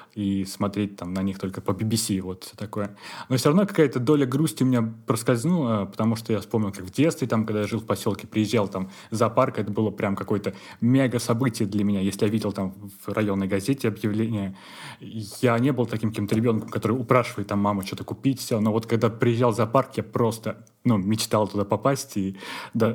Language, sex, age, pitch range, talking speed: Russian, male, 20-39, 105-135 Hz, 200 wpm